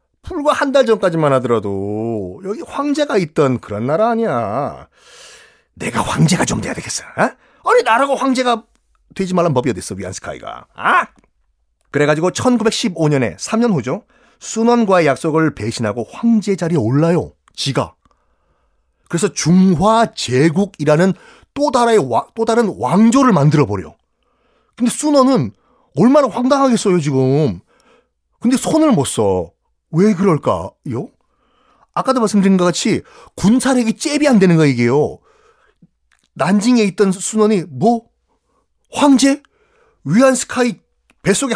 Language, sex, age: Korean, male, 30-49